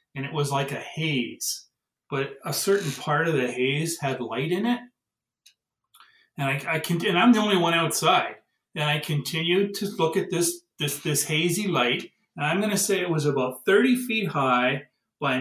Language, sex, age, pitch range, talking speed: English, male, 40-59, 135-175 Hz, 200 wpm